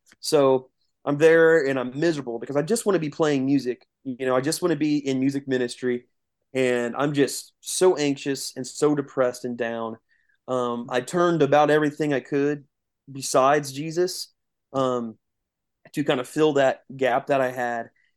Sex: male